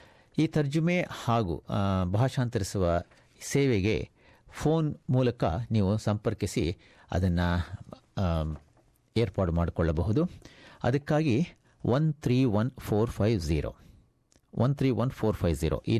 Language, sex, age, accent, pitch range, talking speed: Kannada, male, 50-69, native, 85-125 Hz, 55 wpm